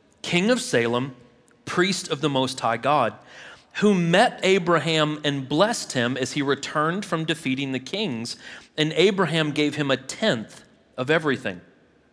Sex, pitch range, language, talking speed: male, 130-175 Hz, English, 150 wpm